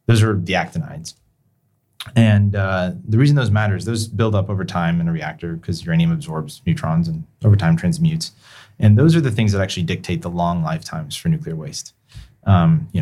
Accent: American